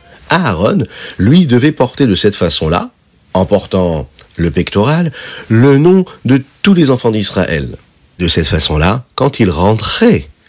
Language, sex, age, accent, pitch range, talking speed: French, male, 50-69, French, 85-125 Hz, 135 wpm